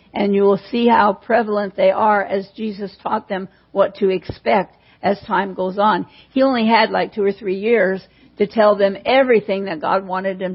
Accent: American